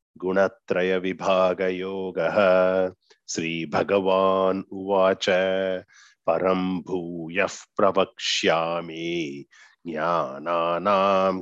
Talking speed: 65 wpm